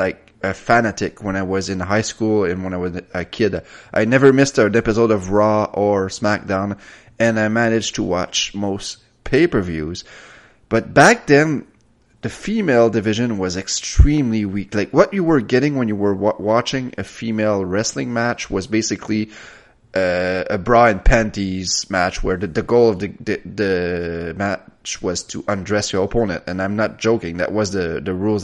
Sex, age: male, 30-49